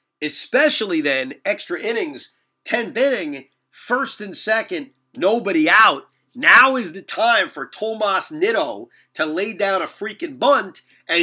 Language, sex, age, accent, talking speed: English, male, 40-59, American, 135 wpm